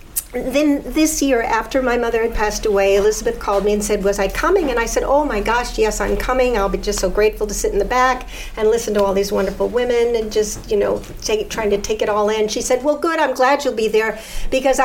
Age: 50-69